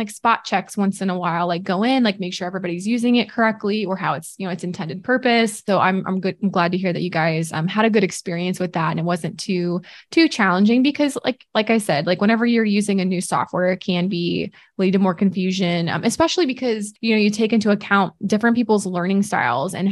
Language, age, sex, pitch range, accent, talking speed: English, 20-39, female, 180-215 Hz, American, 245 wpm